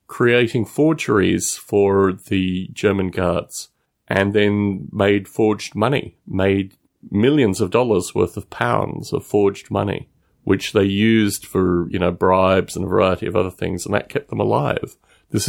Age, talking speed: 30-49, 155 wpm